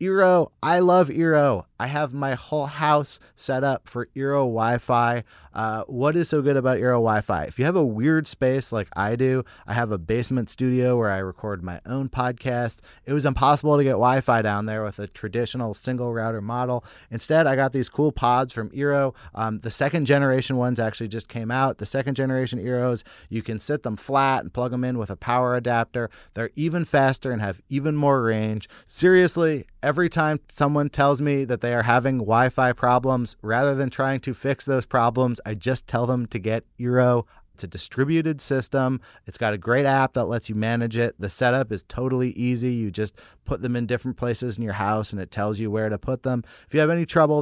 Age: 30-49